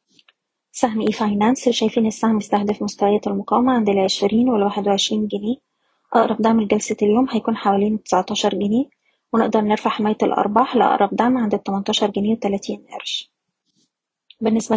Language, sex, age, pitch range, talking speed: Arabic, female, 20-39, 205-230 Hz, 135 wpm